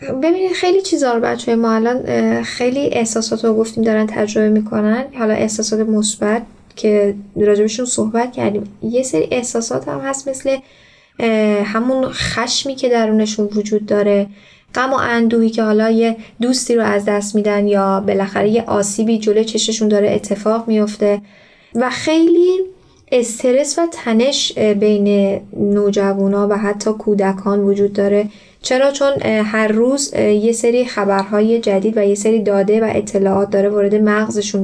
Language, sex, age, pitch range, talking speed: Persian, female, 10-29, 205-235 Hz, 140 wpm